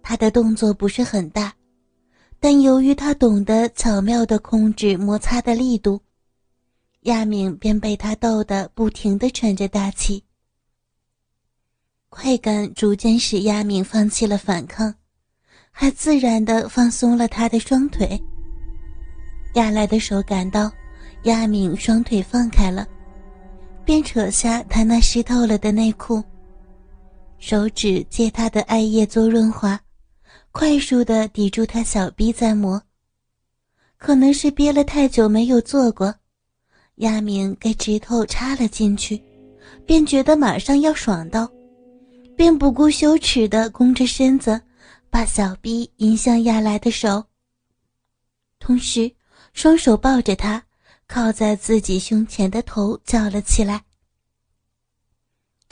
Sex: female